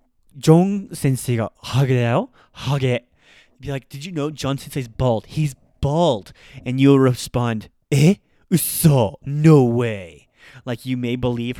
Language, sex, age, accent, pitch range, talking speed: English, male, 20-39, American, 115-145 Hz, 140 wpm